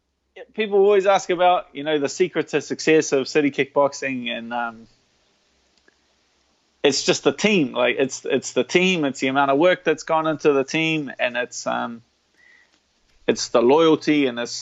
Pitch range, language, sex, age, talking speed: 130-160 Hz, English, male, 20-39, 170 wpm